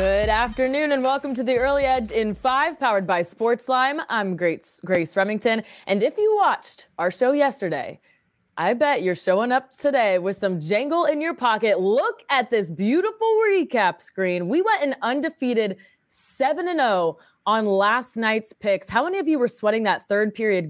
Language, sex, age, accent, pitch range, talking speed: English, female, 20-39, American, 185-260 Hz, 175 wpm